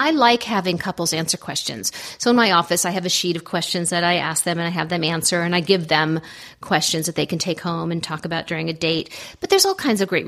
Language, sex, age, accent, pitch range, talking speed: English, female, 40-59, American, 170-225 Hz, 275 wpm